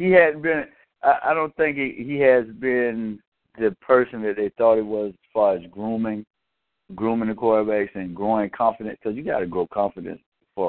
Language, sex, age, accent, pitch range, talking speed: English, male, 60-79, American, 100-145 Hz, 195 wpm